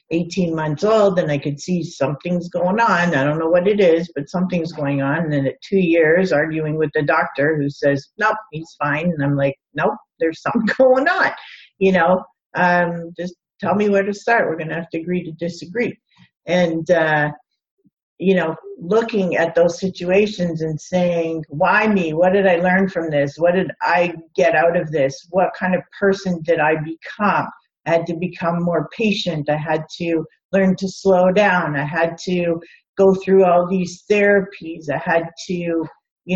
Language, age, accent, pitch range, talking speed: English, 50-69, American, 160-190 Hz, 190 wpm